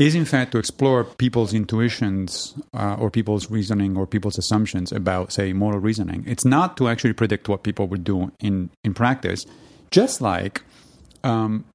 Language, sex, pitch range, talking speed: English, male, 100-125 Hz, 170 wpm